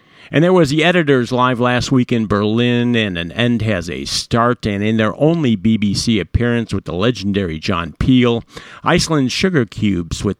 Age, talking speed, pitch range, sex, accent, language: 50-69, 180 wpm, 105-125 Hz, male, American, English